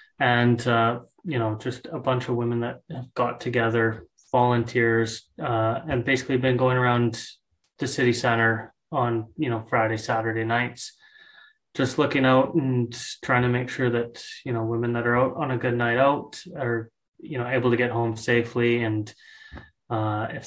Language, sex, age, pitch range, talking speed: English, male, 20-39, 115-130 Hz, 175 wpm